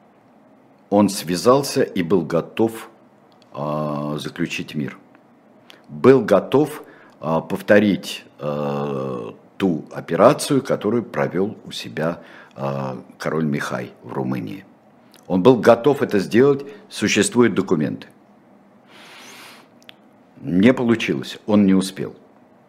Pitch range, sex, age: 85-115 Hz, male, 60-79